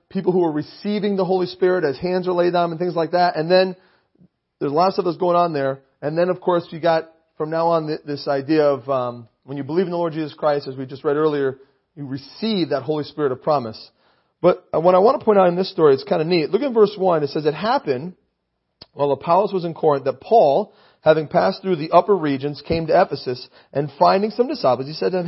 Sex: male